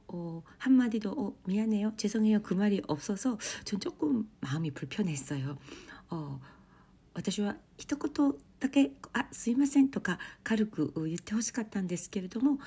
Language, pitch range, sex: Korean, 150-215 Hz, female